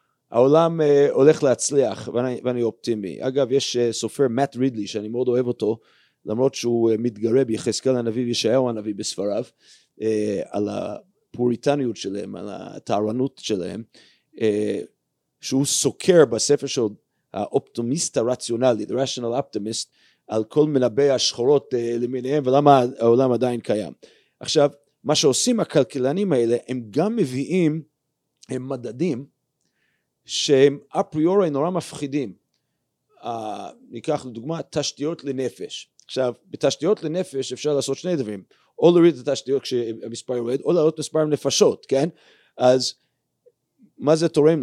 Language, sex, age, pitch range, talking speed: Hebrew, male, 30-49, 125-155 Hz, 120 wpm